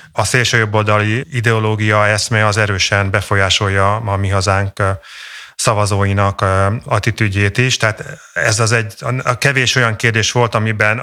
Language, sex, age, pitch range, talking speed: Hungarian, male, 30-49, 105-120 Hz, 125 wpm